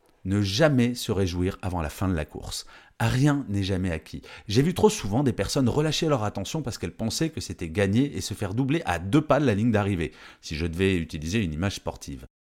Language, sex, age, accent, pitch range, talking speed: French, male, 40-59, French, 100-155 Hz, 225 wpm